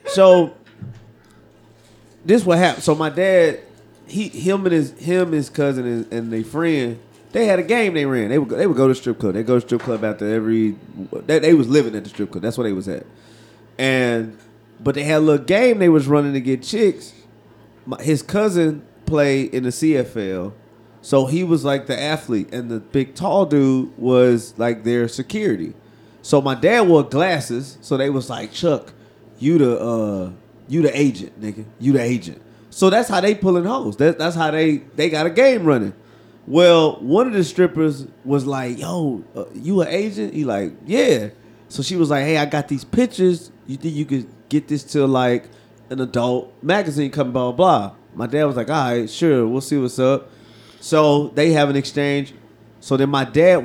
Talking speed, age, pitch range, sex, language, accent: 200 wpm, 30-49, 115-155 Hz, male, English, American